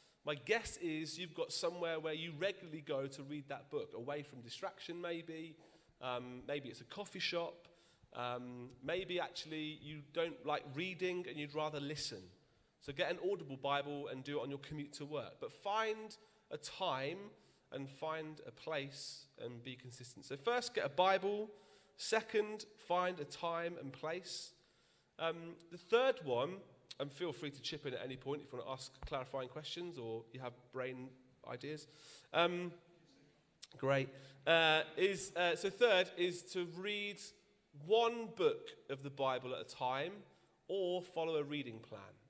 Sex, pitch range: male, 135-175 Hz